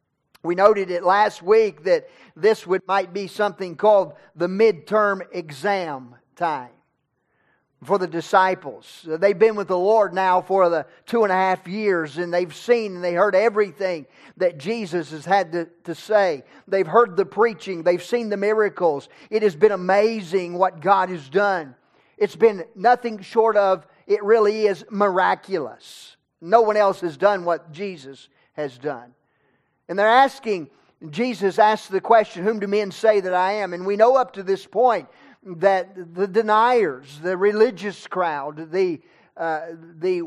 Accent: American